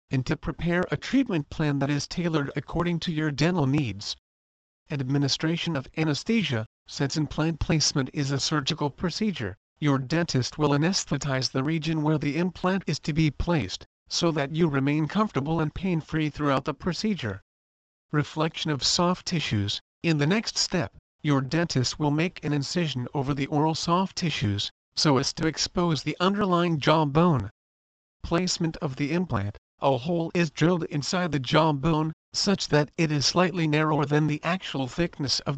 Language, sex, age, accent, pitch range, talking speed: English, male, 50-69, American, 140-170 Hz, 160 wpm